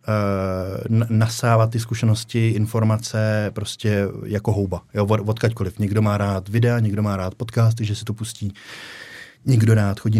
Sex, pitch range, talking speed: male, 100-110 Hz, 140 wpm